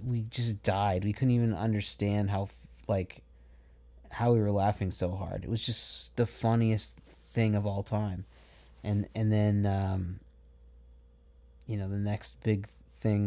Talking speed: 155 wpm